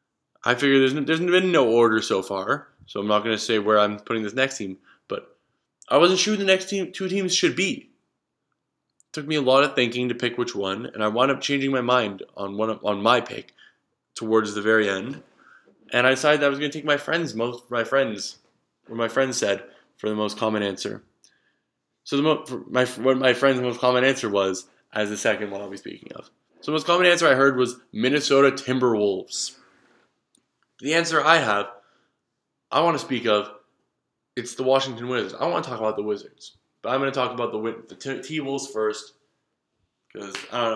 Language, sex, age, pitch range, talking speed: English, male, 20-39, 110-135 Hz, 220 wpm